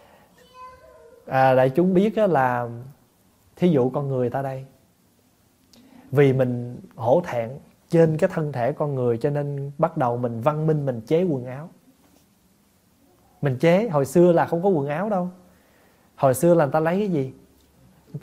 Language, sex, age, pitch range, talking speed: Vietnamese, male, 20-39, 120-175 Hz, 165 wpm